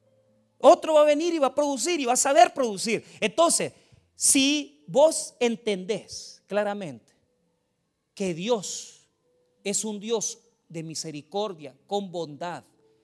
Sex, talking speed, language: male, 125 wpm, Spanish